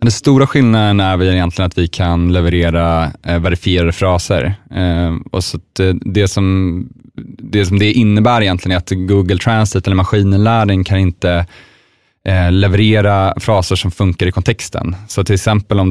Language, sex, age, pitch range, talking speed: Swedish, male, 30-49, 90-100 Hz, 160 wpm